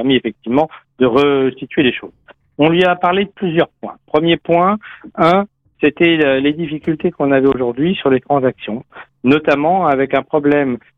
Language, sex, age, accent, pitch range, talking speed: French, male, 50-69, French, 125-150 Hz, 160 wpm